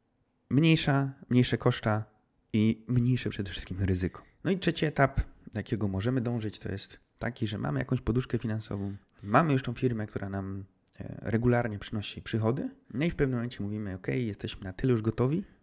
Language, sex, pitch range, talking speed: Polish, male, 100-125 Hz, 175 wpm